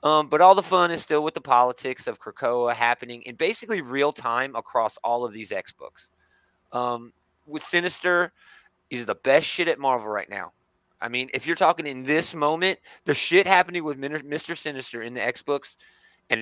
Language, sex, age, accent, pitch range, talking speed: English, male, 30-49, American, 120-150 Hz, 185 wpm